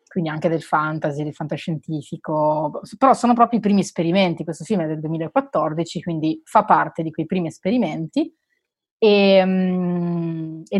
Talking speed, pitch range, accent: 145 wpm, 165-215 Hz, native